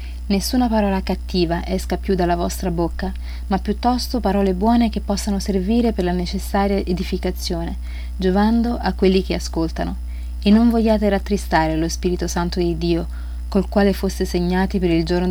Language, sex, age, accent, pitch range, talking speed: Italian, female, 30-49, native, 155-195 Hz, 155 wpm